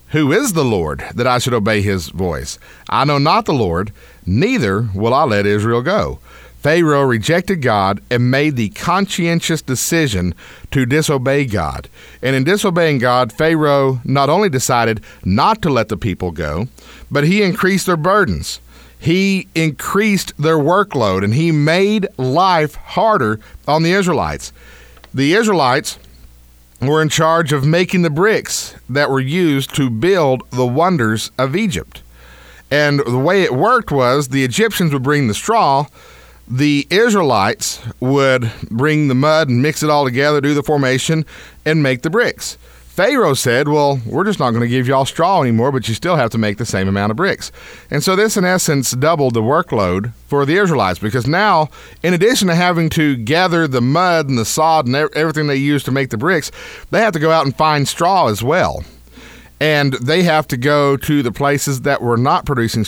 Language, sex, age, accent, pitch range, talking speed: English, male, 50-69, American, 115-160 Hz, 180 wpm